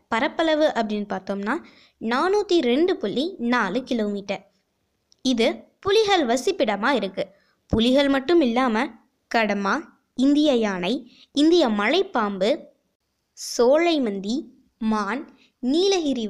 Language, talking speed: Tamil, 90 wpm